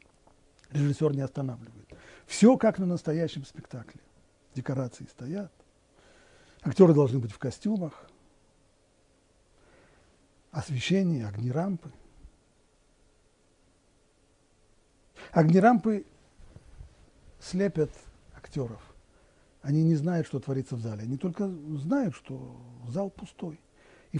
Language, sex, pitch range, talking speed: Russian, male, 110-170 Hz, 85 wpm